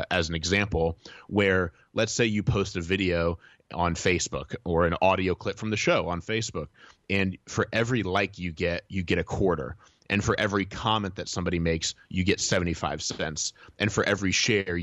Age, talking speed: 30-49, 185 wpm